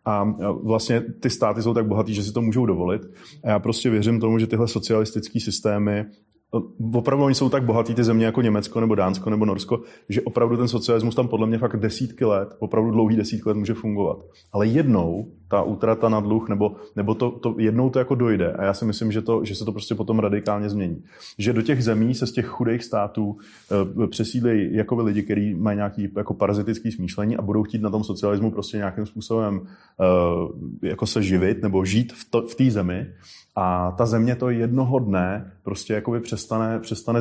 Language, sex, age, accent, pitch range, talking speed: Czech, male, 30-49, native, 105-115 Hz, 200 wpm